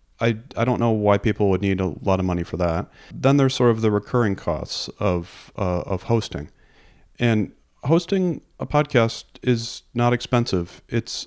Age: 40-59